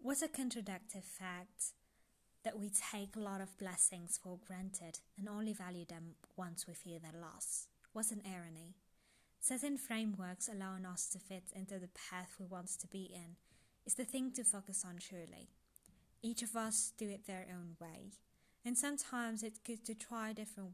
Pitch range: 175-210 Hz